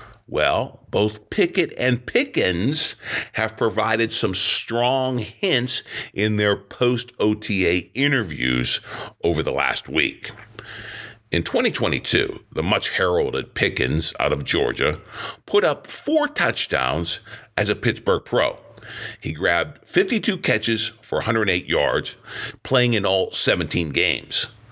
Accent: American